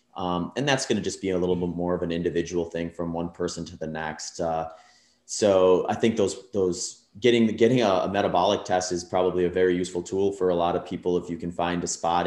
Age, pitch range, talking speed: 30-49, 85-95 Hz, 245 wpm